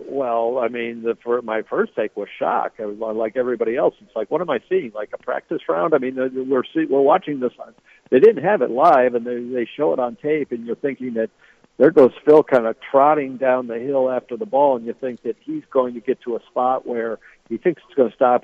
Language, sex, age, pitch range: English, male, 60-79, 115-135 Hz